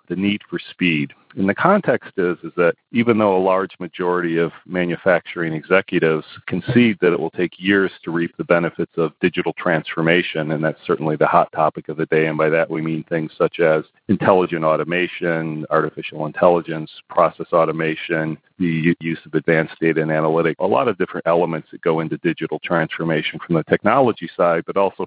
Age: 40-59